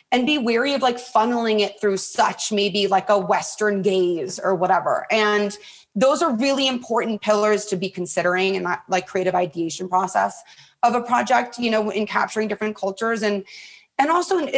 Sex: female